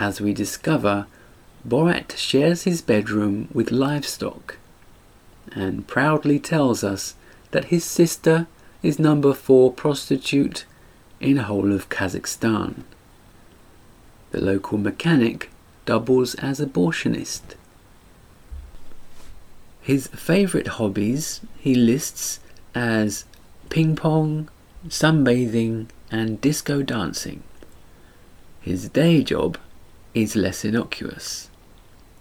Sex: male